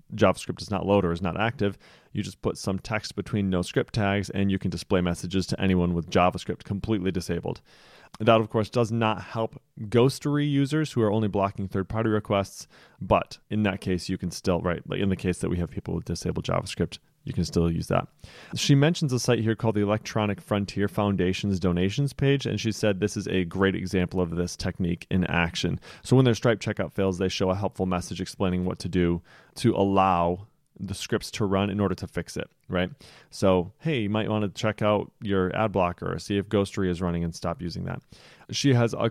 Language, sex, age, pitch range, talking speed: English, male, 30-49, 95-115 Hz, 215 wpm